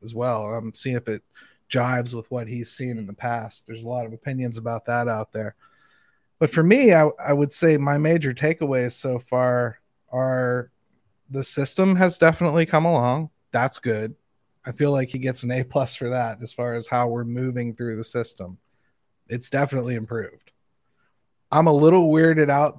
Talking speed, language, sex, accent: 185 wpm, English, male, American